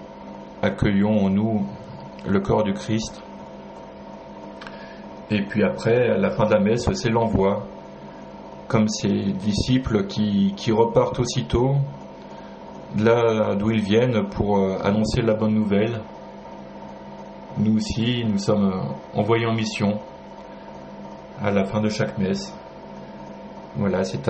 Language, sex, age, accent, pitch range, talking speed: French, male, 30-49, French, 95-115 Hz, 120 wpm